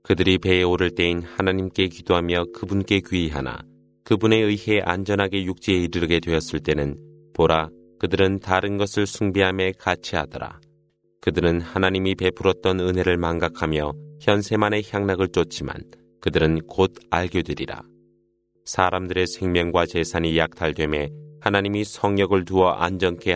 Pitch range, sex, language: 85-100 Hz, male, Korean